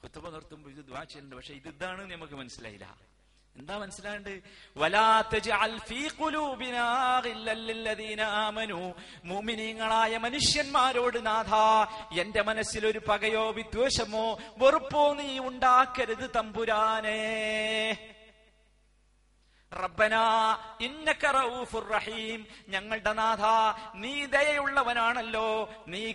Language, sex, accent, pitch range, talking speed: Malayalam, male, native, 160-240 Hz, 65 wpm